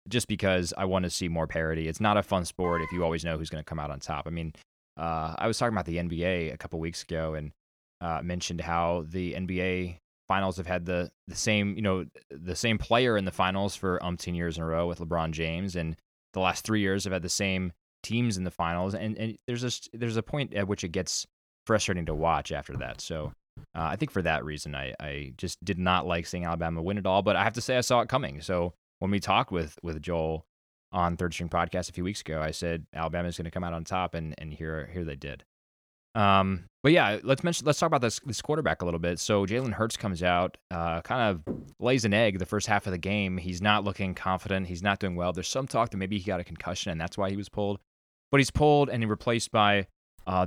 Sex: male